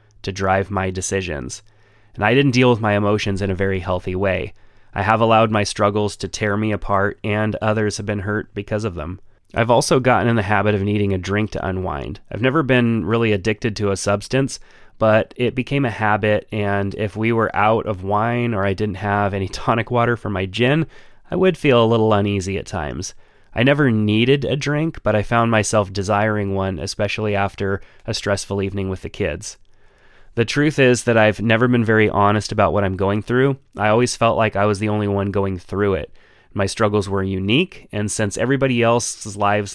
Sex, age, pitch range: male, 30-49, 100-115 Hz